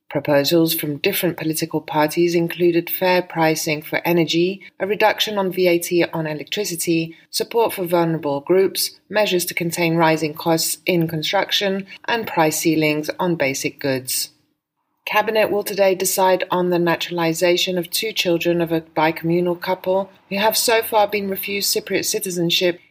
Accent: British